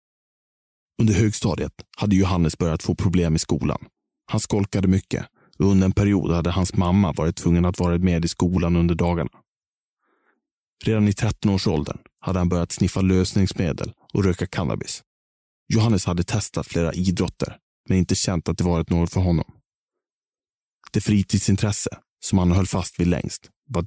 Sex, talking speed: male, 155 wpm